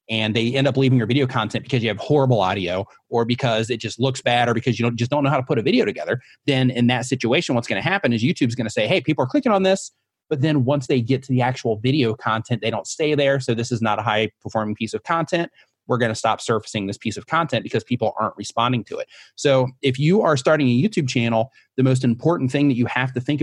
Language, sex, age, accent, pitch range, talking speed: English, male, 30-49, American, 115-140 Hz, 275 wpm